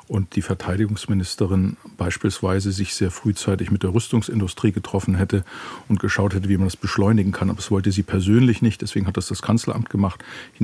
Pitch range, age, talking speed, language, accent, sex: 95-110 Hz, 50-69, 185 wpm, German, German, male